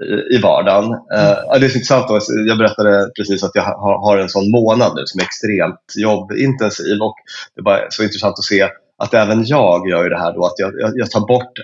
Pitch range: 100-120 Hz